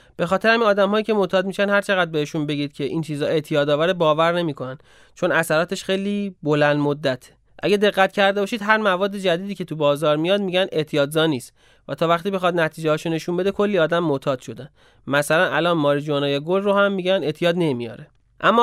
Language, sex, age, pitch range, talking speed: Persian, male, 30-49, 145-195 Hz, 185 wpm